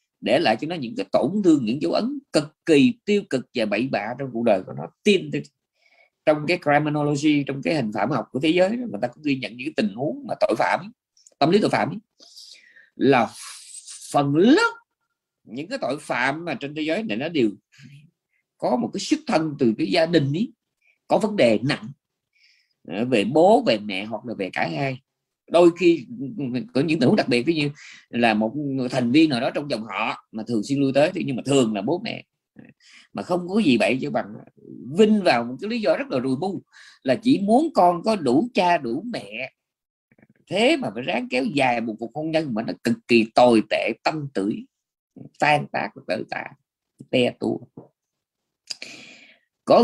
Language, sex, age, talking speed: Vietnamese, male, 20-39, 205 wpm